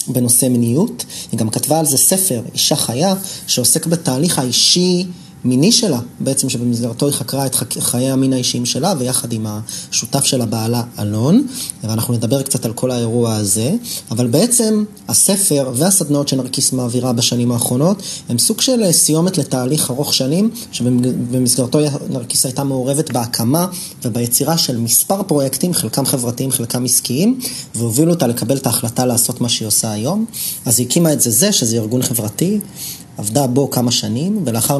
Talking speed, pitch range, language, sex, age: 155 wpm, 120-150 Hz, Hebrew, male, 30-49